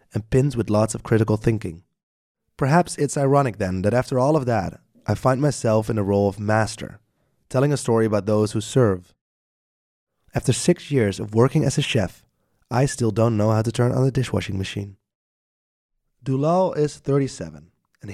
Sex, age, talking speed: male, 30-49, 180 wpm